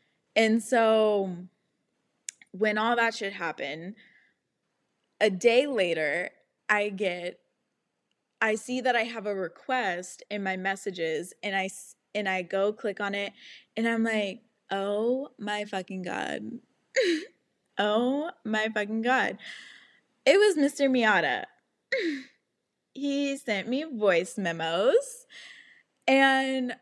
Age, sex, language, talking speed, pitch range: 20-39, female, English, 115 wpm, 195-250 Hz